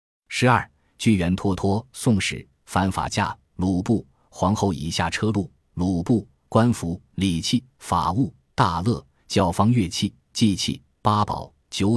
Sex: male